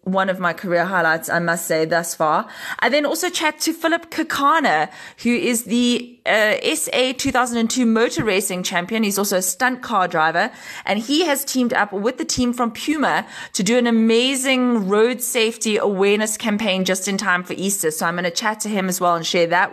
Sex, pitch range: female, 185-245 Hz